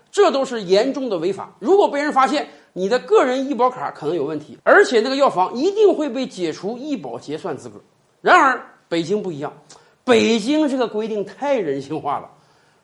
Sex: male